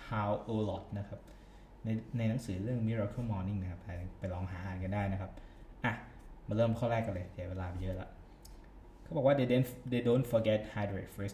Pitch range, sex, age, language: 95-115 Hz, male, 20-39, Thai